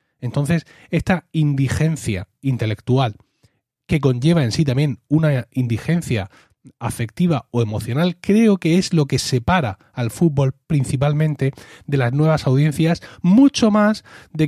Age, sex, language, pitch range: 30-49, male, Spanish, 120-160 Hz